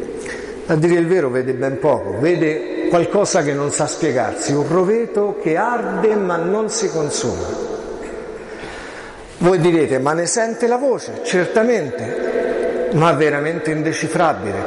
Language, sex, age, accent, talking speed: Italian, male, 50-69, native, 130 wpm